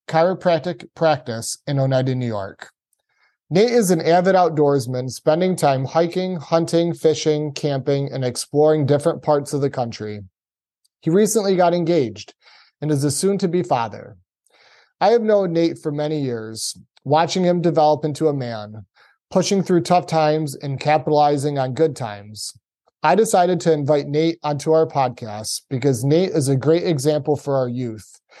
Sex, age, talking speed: male, 30-49, 150 wpm